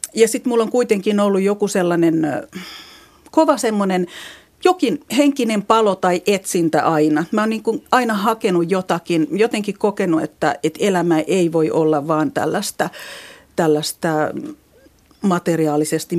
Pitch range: 165-230 Hz